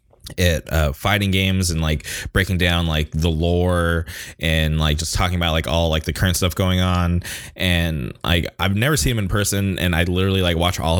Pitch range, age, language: 85-95 Hz, 20-39, English